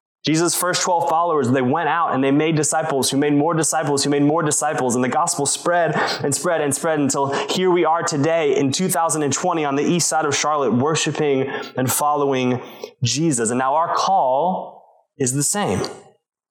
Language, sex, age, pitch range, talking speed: English, male, 20-39, 130-160 Hz, 185 wpm